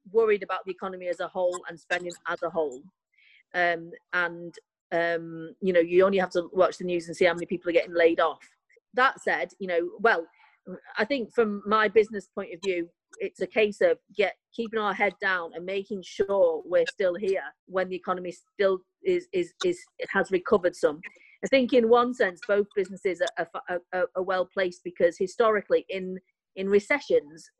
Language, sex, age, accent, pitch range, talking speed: English, female, 40-59, British, 175-215 Hz, 200 wpm